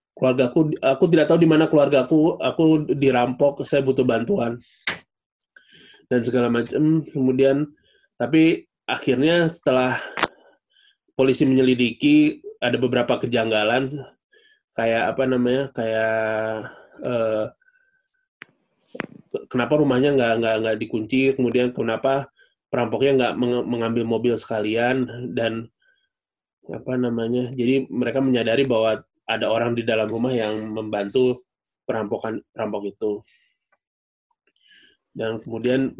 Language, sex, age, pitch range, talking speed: Indonesian, male, 20-39, 115-150 Hz, 100 wpm